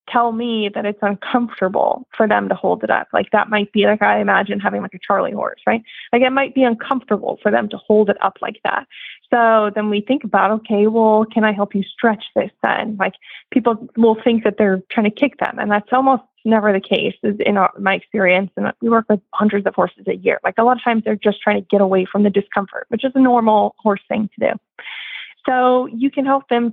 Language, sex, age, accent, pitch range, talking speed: English, female, 20-39, American, 200-235 Hz, 240 wpm